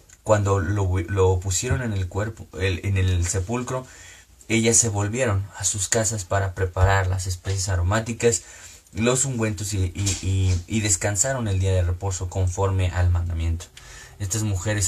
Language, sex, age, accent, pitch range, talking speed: Spanish, male, 30-49, Mexican, 90-105 Hz, 155 wpm